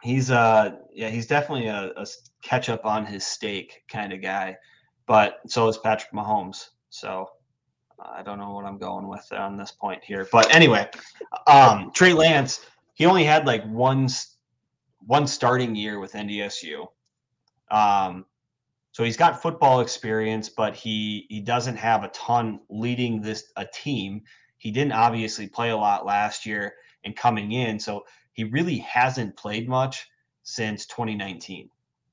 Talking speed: 155 wpm